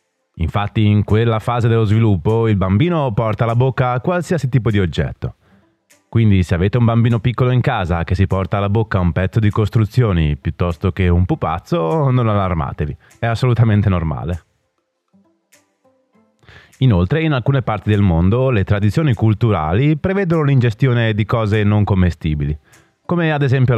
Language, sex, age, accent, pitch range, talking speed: Italian, male, 30-49, native, 95-125 Hz, 150 wpm